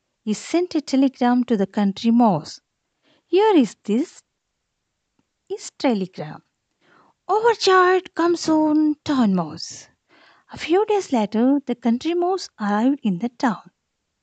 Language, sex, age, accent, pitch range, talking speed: Telugu, female, 50-69, native, 200-330 Hz, 125 wpm